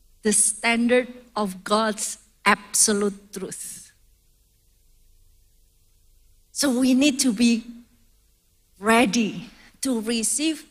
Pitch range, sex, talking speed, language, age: 200-275 Hz, female, 80 wpm, English, 40-59